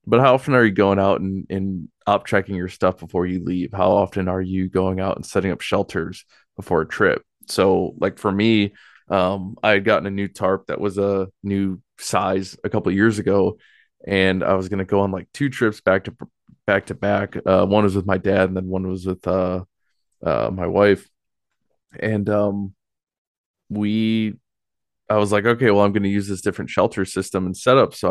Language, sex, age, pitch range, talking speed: English, male, 20-39, 95-100 Hz, 205 wpm